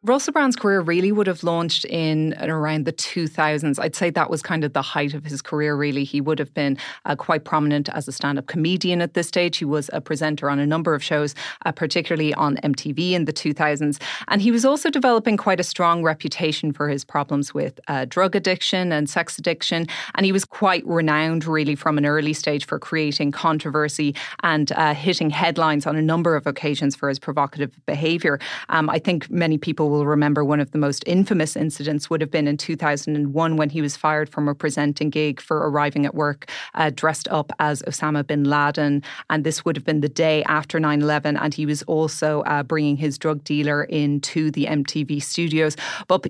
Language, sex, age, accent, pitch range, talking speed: English, female, 30-49, Irish, 150-170 Hz, 205 wpm